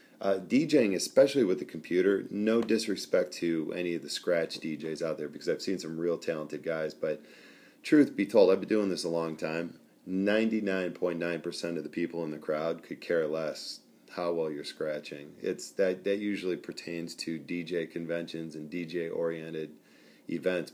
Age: 40-59